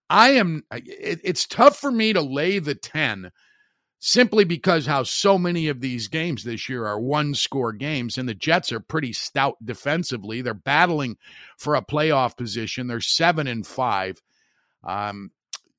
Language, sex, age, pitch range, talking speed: English, male, 50-69, 130-175 Hz, 160 wpm